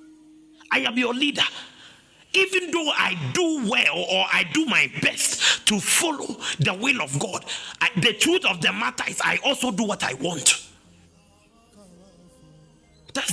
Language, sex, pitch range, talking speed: English, male, 165-265 Hz, 150 wpm